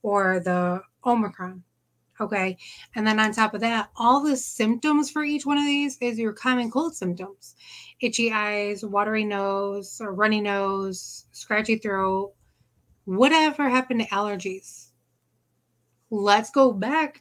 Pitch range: 185-235 Hz